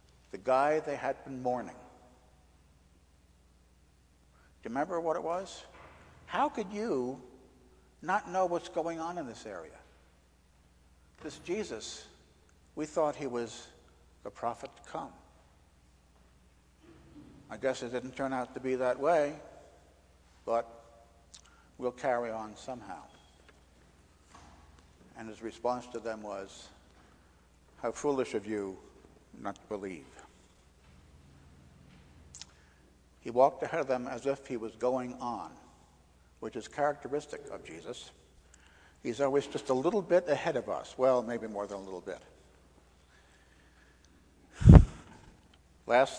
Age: 60-79